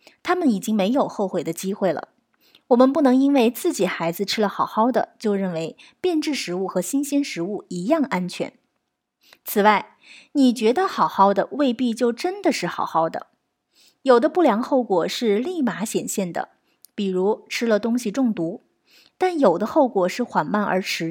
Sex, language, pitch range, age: female, Chinese, 195-275 Hz, 30-49